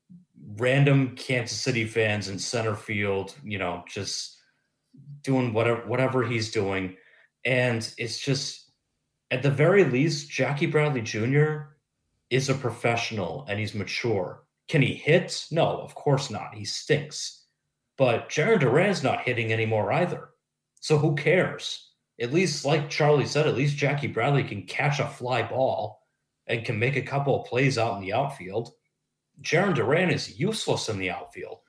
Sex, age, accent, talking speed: male, 30-49, American, 155 wpm